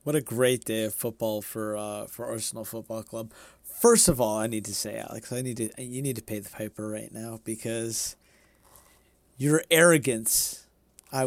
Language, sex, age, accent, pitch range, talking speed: English, male, 30-49, American, 110-140 Hz, 185 wpm